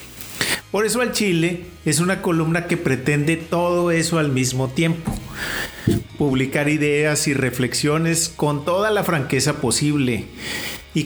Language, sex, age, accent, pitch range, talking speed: Spanish, male, 40-59, Mexican, 130-165 Hz, 130 wpm